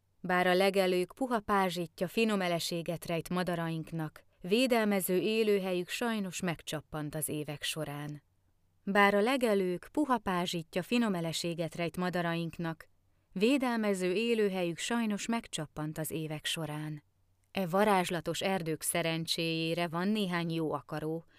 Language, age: Hungarian, 30-49